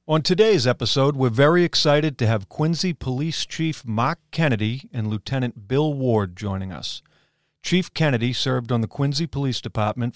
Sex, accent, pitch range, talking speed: male, American, 110-135 Hz, 160 wpm